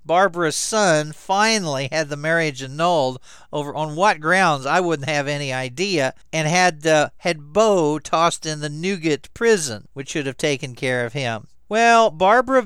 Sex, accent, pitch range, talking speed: male, American, 135-180 Hz, 165 wpm